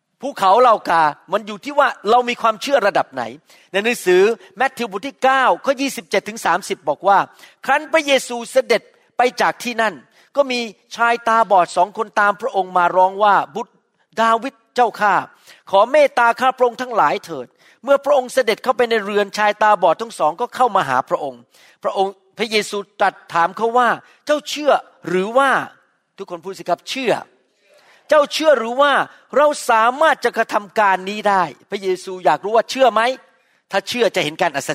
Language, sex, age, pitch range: Thai, male, 40-59, 200-265 Hz